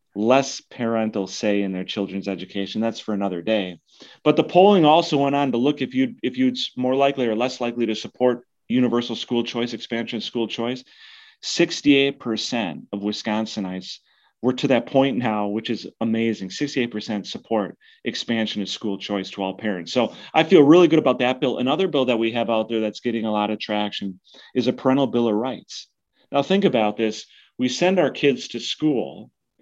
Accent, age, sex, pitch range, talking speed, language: American, 30-49, male, 105-140 Hz, 190 wpm, English